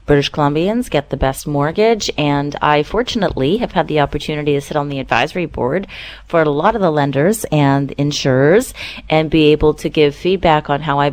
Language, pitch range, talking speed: English, 145-180 Hz, 195 wpm